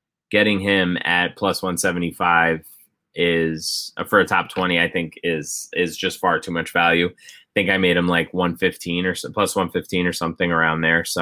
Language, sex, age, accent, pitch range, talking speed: English, male, 20-39, American, 85-95 Hz, 185 wpm